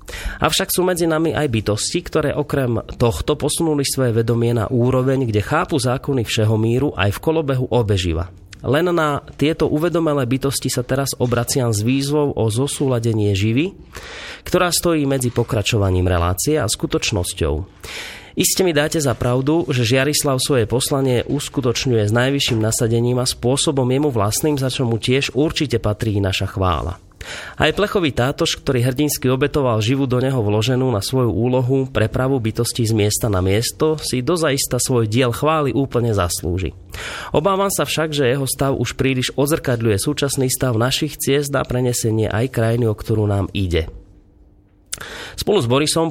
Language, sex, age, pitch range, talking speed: Slovak, male, 30-49, 110-145 Hz, 155 wpm